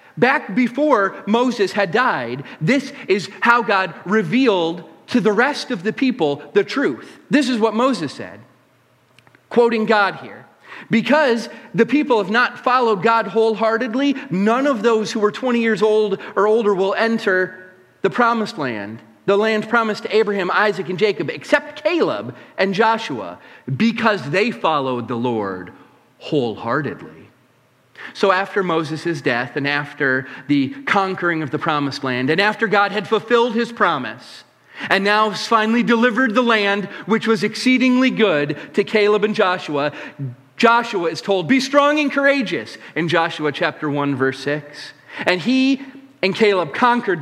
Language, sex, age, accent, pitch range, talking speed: English, male, 40-59, American, 145-230 Hz, 150 wpm